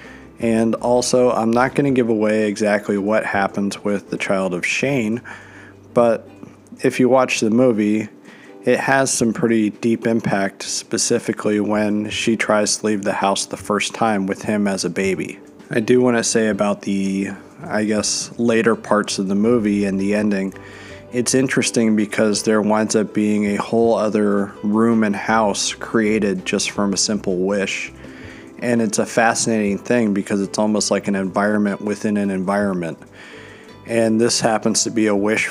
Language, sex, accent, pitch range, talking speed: English, male, American, 100-115 Hz, 170 wpm